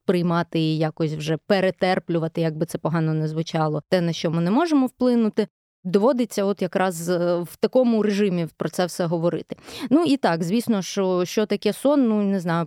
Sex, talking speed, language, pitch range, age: female, 185 wpm, Ukrainian, 170-225 Hz, 20-39